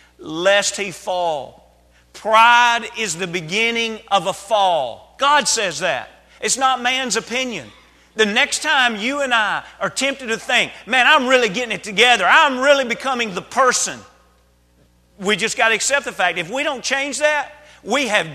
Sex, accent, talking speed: male, American, 170 wpm